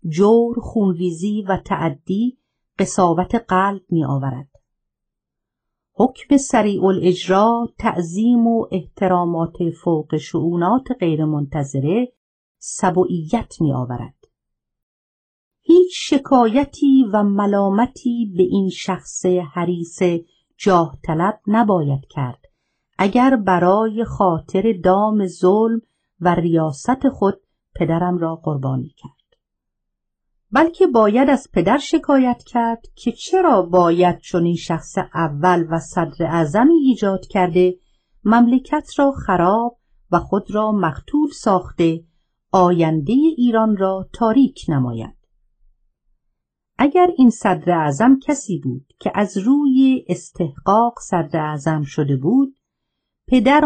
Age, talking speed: 50-69, 100 wpm